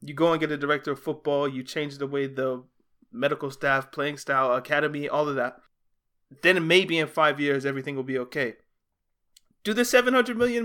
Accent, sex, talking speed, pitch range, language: American, male, 195 wpm, 145-210 Hz, English